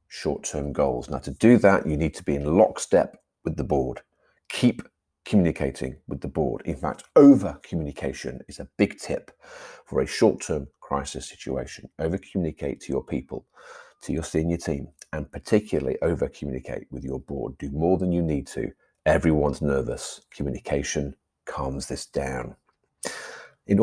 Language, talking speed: English, 150 wpm